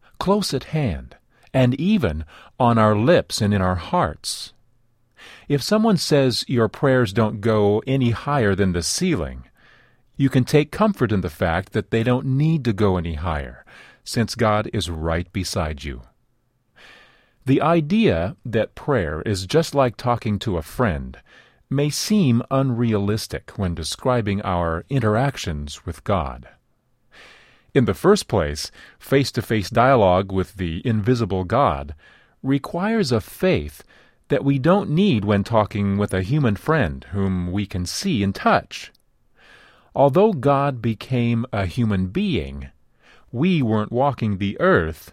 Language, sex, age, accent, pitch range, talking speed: English, male, 40-59, American, 95-135 Hz, 140 wpm